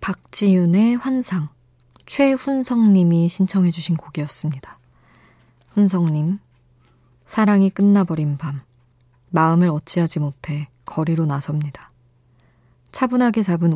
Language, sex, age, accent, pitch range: Korean, female, 20-39, native, 130-180 Hz